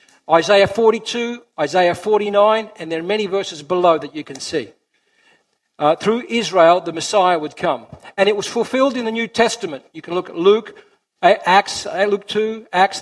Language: English